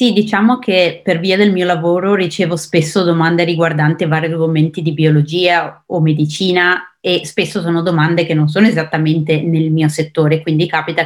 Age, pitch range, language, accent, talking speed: 30-49, 155-195 Hz, Italian, native, 170 wpm